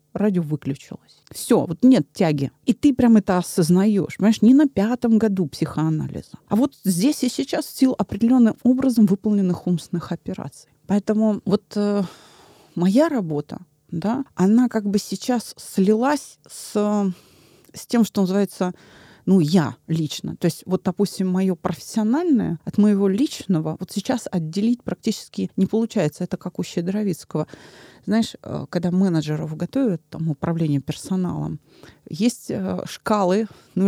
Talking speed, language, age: 135 wpm, Russian, 30-49